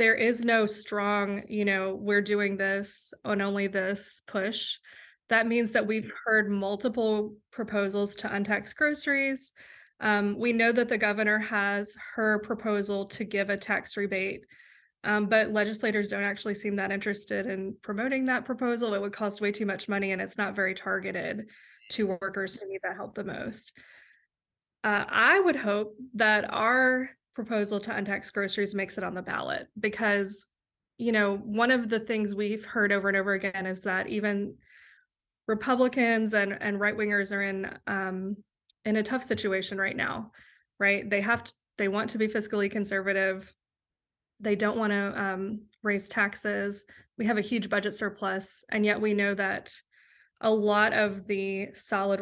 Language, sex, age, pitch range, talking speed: English, female, 20-39, 200-220 Hz, 170 wpm